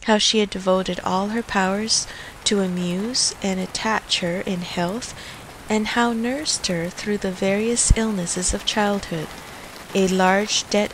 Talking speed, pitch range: 150 wpm, 180-230 Hz